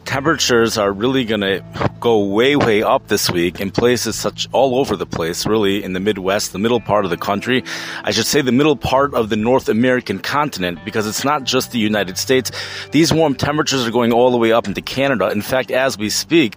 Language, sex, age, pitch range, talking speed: English, male, 30-49, 105-130 Hz, 225 wpm